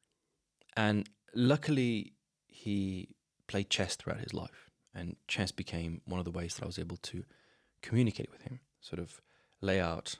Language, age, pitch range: English, 20-39, 90-120 Hz